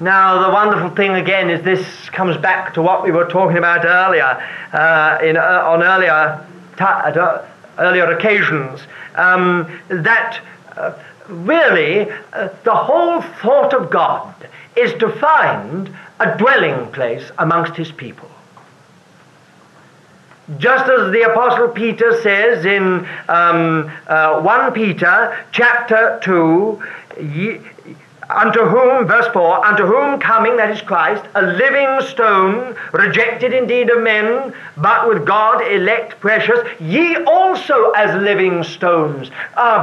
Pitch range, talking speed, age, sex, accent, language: 175-245 Hz, 130 wpm, 50-69, male, British, English